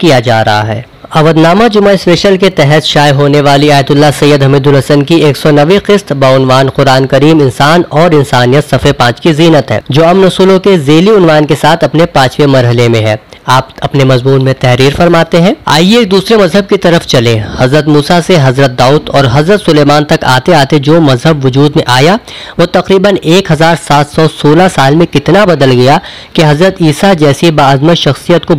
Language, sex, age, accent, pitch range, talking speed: Hindi, female, 20-39, native, 135-175 Hz, 155 wpm